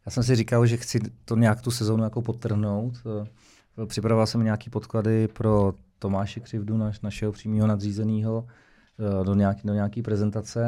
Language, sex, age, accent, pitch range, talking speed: Czech, male, 30-49, native, 105-120 Hz, 145 wpm